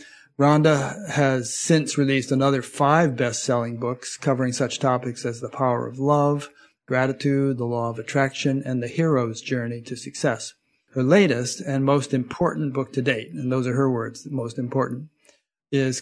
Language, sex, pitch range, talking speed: English, male, 125-140 Hz, 165 wpm